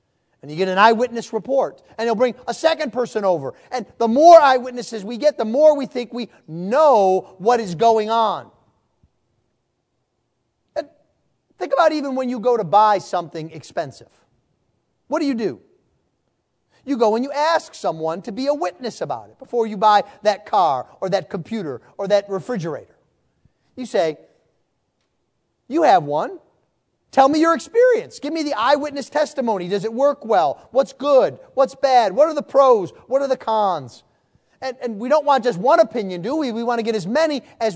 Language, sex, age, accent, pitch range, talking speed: English, male, 40-59, American, 200-280 Hz, 180 wpm